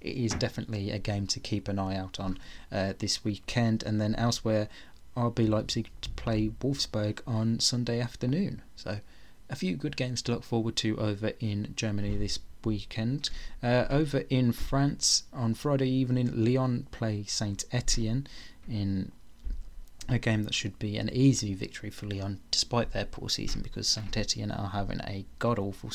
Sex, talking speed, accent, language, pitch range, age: male, 160 wpm, British, English, 100-120 Hz, 20-39